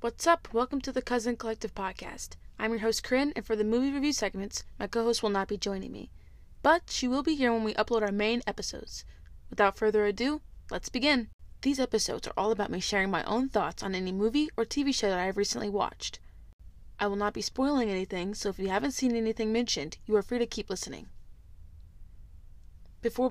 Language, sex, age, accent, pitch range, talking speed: English, female, 20-39, American, 195-240 Hz, 215 wpm